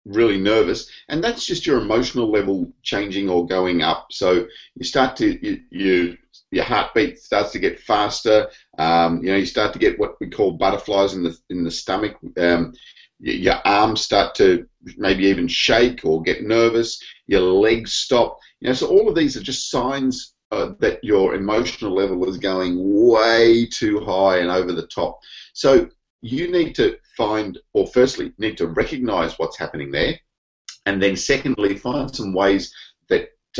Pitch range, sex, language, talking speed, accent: 90-130 Hz, male, English, 175 wpm, Australian